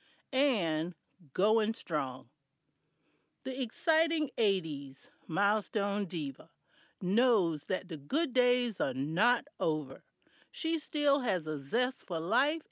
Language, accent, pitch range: English, American, 180-275 Hz